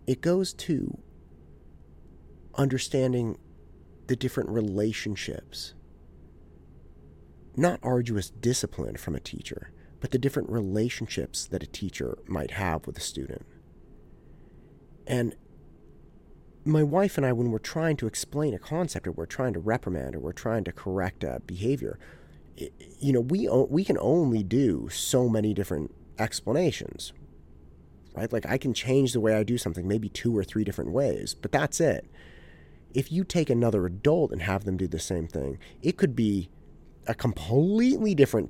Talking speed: 155 wpm